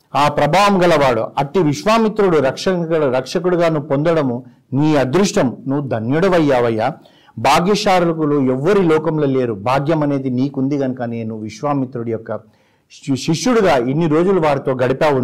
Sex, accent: male, native